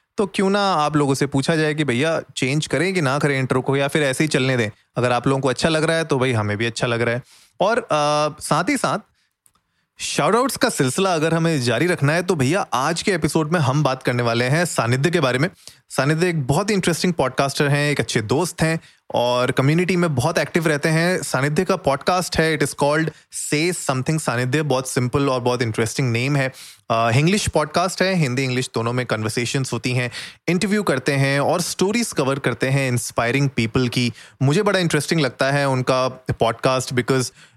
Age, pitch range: 30-49, 125-160 Hz